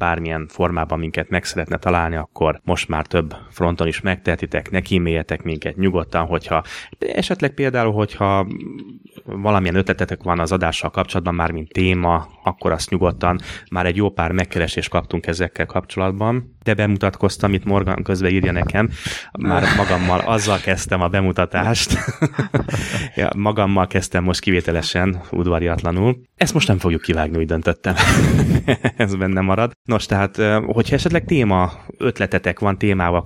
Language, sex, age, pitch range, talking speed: Hungarian, male, 20-39, 85-100 Hz, 145 wpm